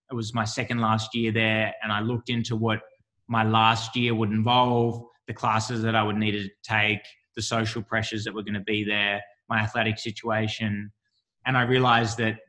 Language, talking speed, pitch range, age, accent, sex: English, 195 wpm, 105-115 Hz, 20-39, Australian, male